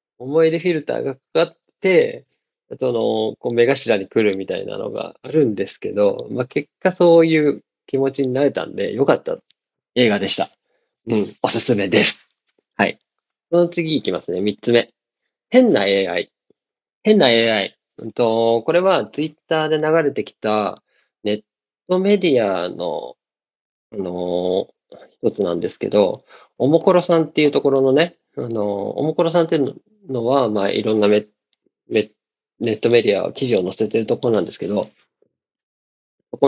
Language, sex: Japanese, male